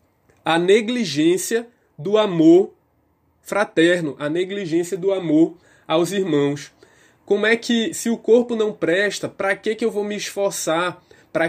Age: 20-39